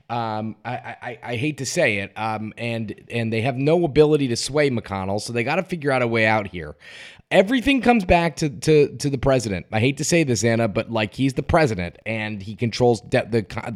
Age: 20-39